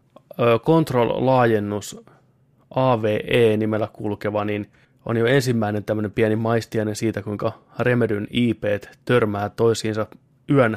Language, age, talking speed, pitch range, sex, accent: Finnish, 20-39, 85 wpm, 105-130 Hz, male, native